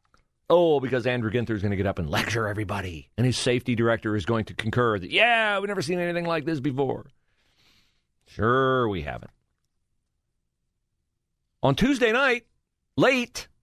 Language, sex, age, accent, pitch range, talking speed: English, male, 40-59, American, 110-170 Hz, 160 wpm